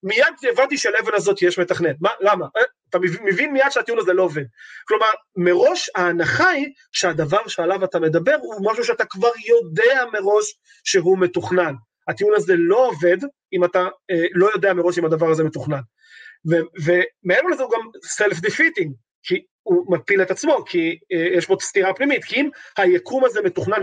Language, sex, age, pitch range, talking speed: Hebrew, male, 30-49, 175-275 Hz, 170 wpm